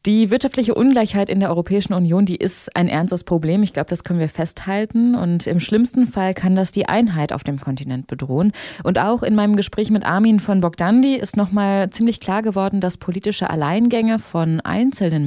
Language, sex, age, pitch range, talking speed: German, female, 30-49, 175-215 Hz, 195 wpm